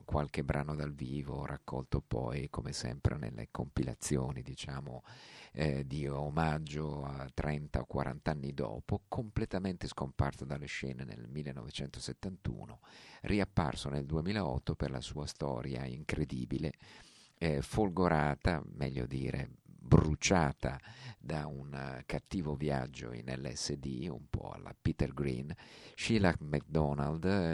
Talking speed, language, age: 115 wpm, Italian, 50-69